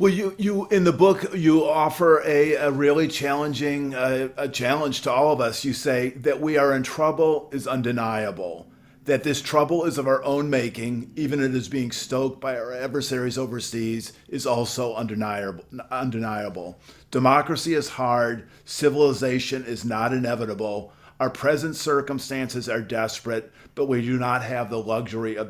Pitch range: 115-145 Hz